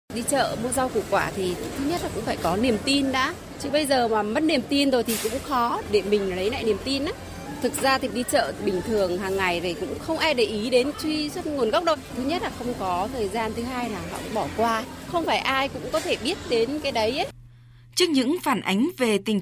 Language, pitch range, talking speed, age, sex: Vietnamese, 190-255 Hz, 265 wpm, 20-39, female